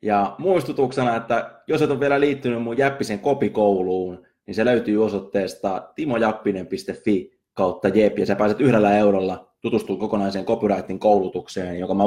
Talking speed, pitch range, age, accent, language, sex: 140 wpm, 100-145 Hz, 20-39, native, Finnish, male